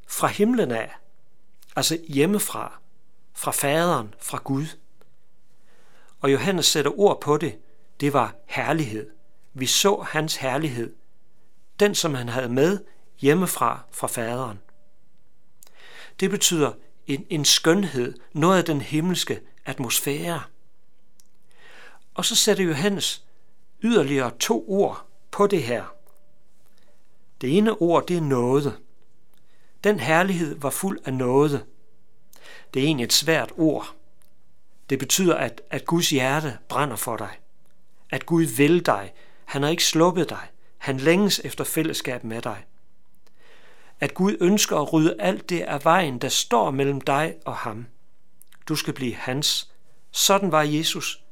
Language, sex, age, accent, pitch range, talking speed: Danish, male, 60-79, native, 130-175 Hz, 135 wpm